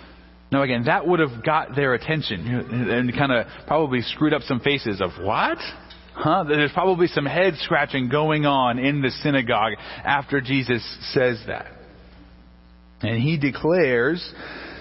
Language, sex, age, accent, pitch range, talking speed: English, male, 30-49, American, 120-155 Hz, 145 wpm